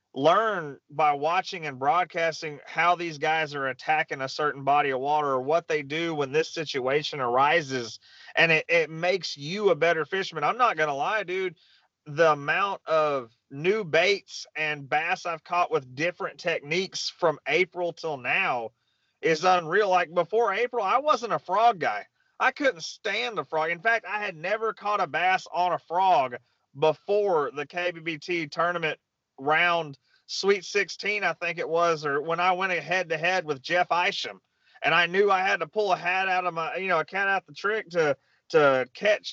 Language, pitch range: English, 155-200 Hz